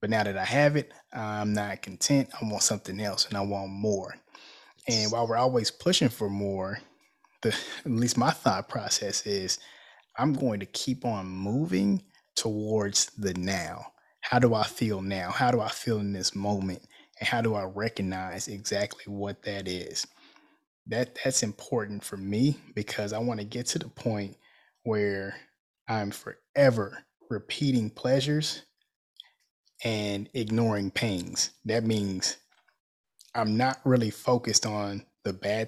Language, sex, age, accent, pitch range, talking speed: English, male, 20-39, American, 100-125 Hz, 155 wpm